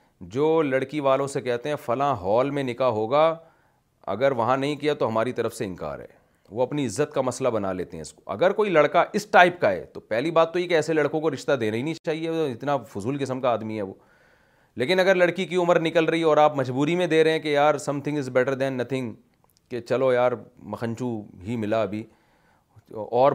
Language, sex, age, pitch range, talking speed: Urdu, male, 40-59, 110-150 Hz, 230 wpm